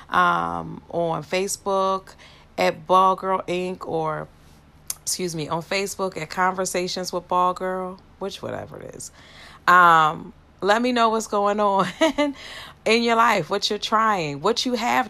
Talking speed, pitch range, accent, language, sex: 145 wpm, 175-210 Hz, American, English, female